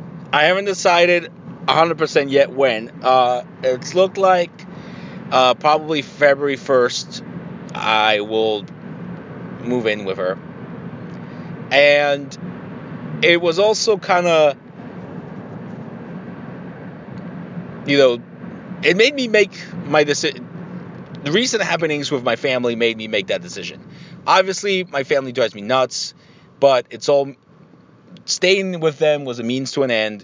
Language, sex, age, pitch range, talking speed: English, male, 40-59, 120-175 Hz, 125 wpm